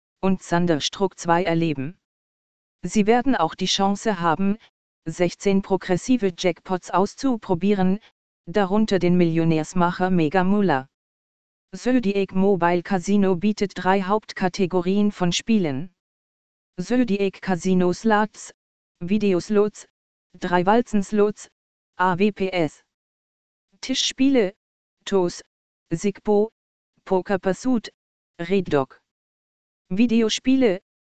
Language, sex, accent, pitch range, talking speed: German, female, German, 175-210 Hz, 75 wpm